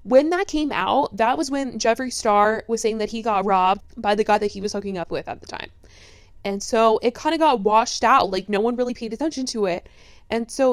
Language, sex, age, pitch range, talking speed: English, female, 20-39, 195-250 Hz, 250 wpm